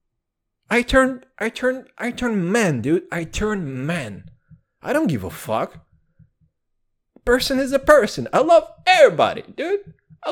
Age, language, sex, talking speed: 20-39, English, male, 145 wpm